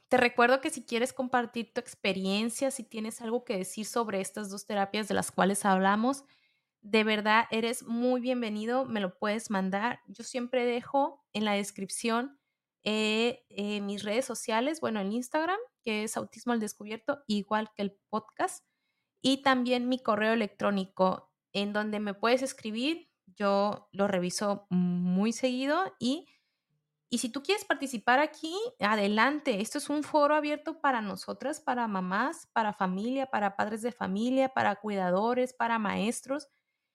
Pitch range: 205-255 Hz